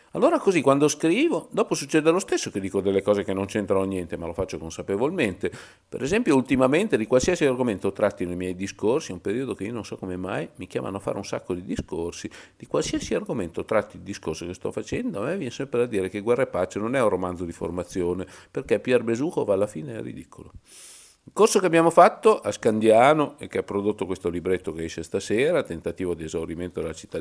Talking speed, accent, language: 225 wpm, native, Italian